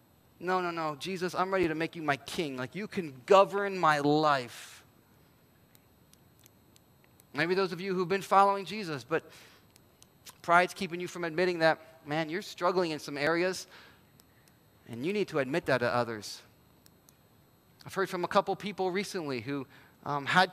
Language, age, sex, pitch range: English, 30-49, male, 150-190 Hz